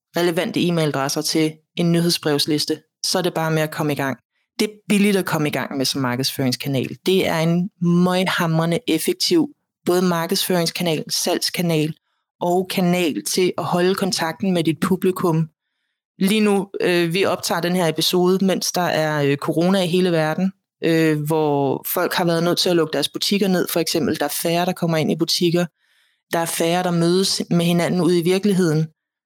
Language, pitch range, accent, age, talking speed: Danish, 165-195 Hz, native, 30-49, 185 wpm